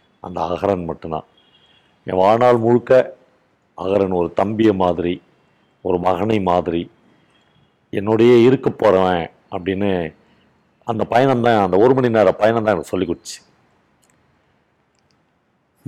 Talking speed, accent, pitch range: 100 wpm, native, 100-135 Hz